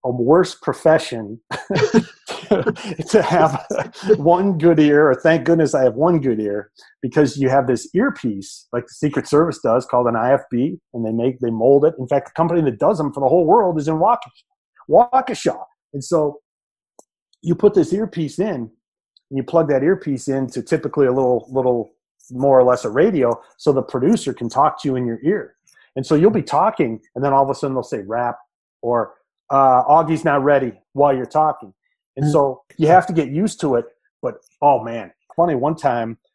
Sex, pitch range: male, 130-170 Hz